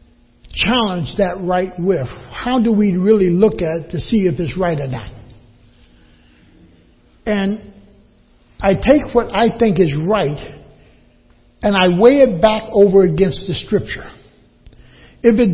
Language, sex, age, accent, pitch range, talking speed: English, male, 60-79, American, 155-235 Hz, 145 wpm